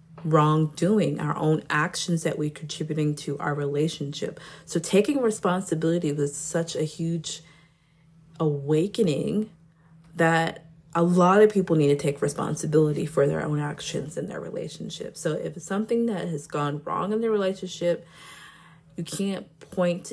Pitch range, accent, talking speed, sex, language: 150-175 Hz, American, 145 wpm, female, English